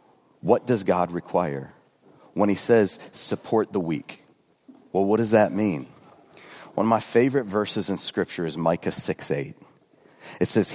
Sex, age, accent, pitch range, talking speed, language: male, 30-49, American, 95-155 Hz, 155 wpm, English